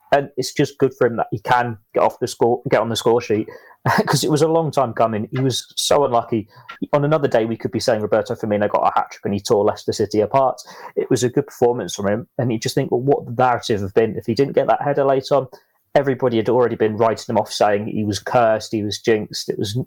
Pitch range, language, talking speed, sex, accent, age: 115-135 Hz, English, 270 wpm, male, British, 30-49